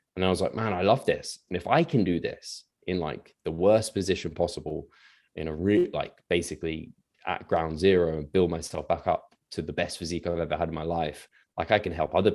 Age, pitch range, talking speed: 20-39, 80-85 Hz, 235 wpm